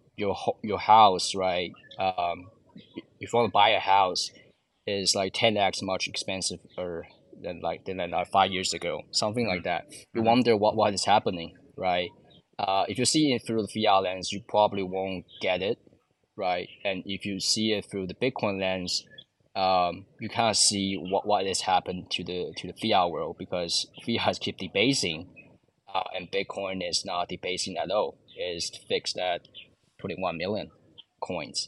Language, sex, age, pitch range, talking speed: English, male, 20-39, 90-110 Hz, 170 wpm